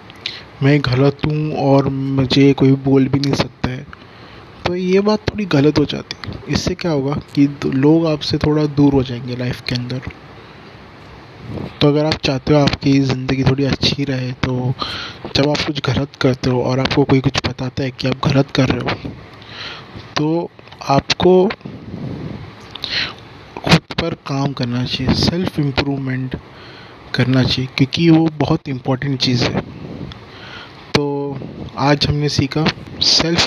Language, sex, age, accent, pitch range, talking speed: Hindi, male, 20-39, native, 130-145 Hz, 145 wpm